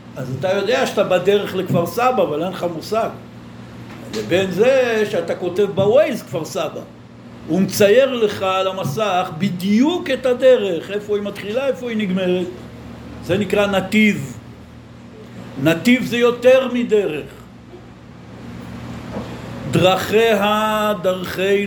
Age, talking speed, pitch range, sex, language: 60-79, 115 wpm, 175-220 Hz, male, Hebrew